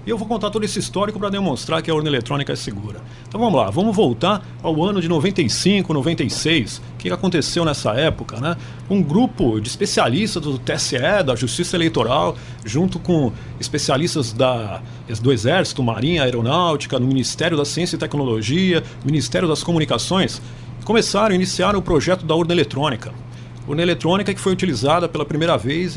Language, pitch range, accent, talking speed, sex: Portuguese, 125-180 Hz, Brazilian, 165 wpm, male